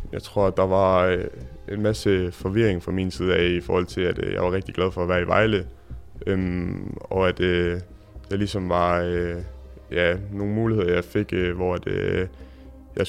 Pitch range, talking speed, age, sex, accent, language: 85-100 Hz, 200 wpm, 20-39, male, native, Danish